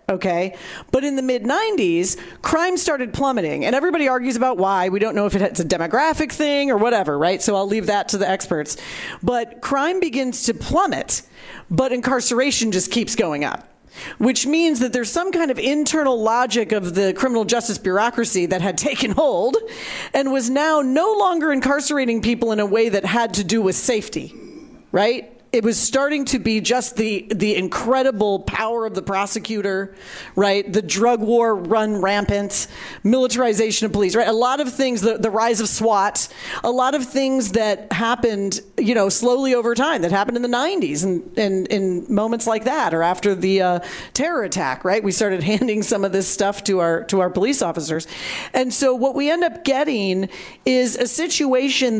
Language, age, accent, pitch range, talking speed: English, 40-59, American, 200-265 Hz, 190 wpm